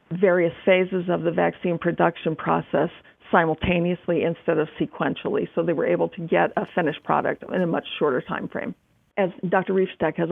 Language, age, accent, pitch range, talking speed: English, 50-69, American, 165-190 Hz, 175 wpm